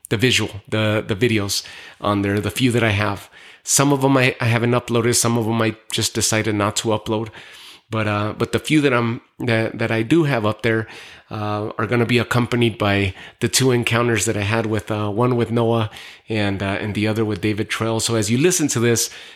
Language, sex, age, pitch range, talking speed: English, male, 30-49, 110-120 Hz, 230 wpm